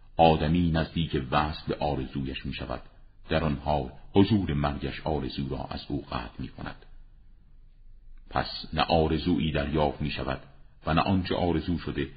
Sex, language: male, Persian